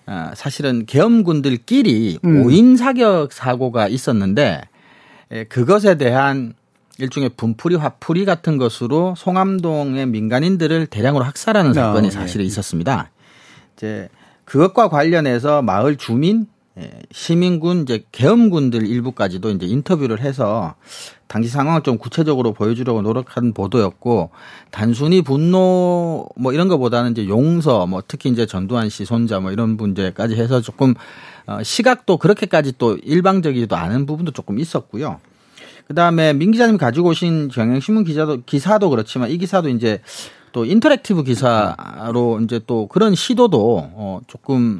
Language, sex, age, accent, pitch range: Korean, male, 40-59, native, 115-165 Hz